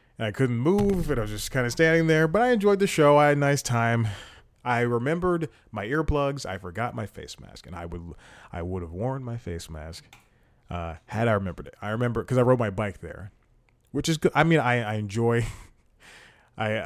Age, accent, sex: 30-49, American, male